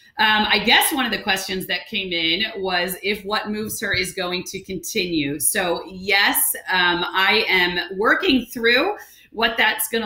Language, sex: English, female